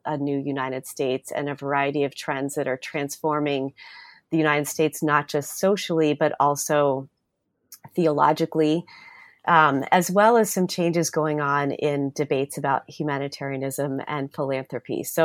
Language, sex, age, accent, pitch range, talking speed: English, female, 30-49, American, 140-165 Hz, 140 wpm